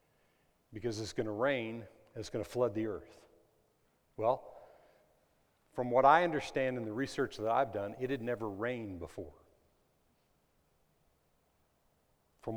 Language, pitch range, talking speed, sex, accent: English, 105-140 Hz, 130 wpm, male, American